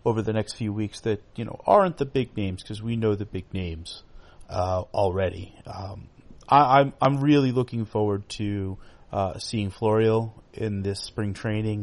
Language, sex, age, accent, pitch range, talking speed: English, male, 30-49, American, 100-120 Hz, 185 wpm